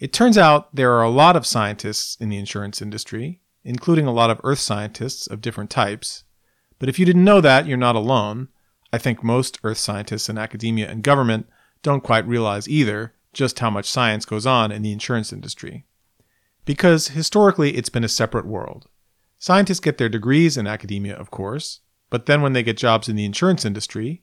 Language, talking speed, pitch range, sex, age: English, 195 wpm, 105-145 Hz, male, 40-59